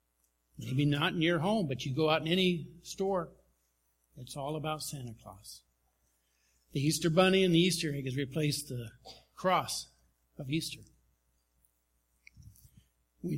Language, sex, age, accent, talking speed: English, male, 60-79, American, 140 wpm